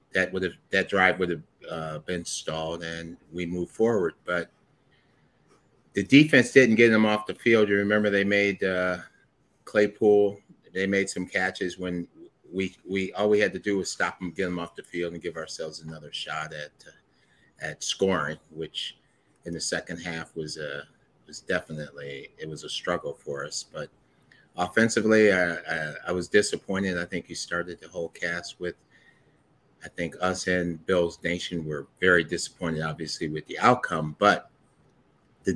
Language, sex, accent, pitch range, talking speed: English, male, American, 80-100 Hz, 175 wpm